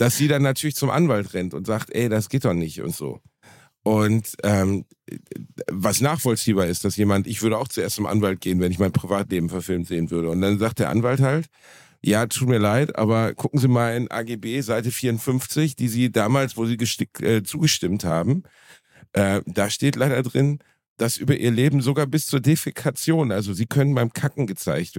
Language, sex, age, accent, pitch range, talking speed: German, male, 50-69, German, 110-140 Hz, 200 wpm